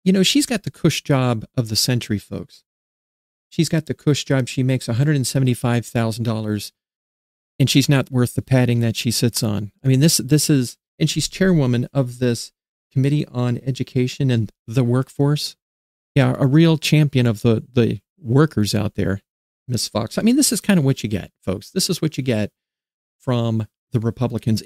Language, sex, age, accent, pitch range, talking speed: English, male, 40-59, American, 110-140 Hz, 185 wpm